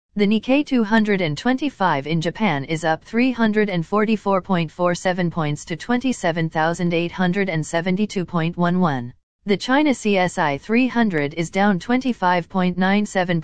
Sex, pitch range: female, 165-220 Hz